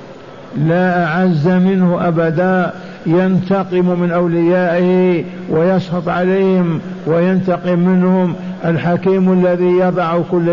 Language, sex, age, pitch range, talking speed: Arabic, male, 60-79, 170-180 Hz, 85 wpm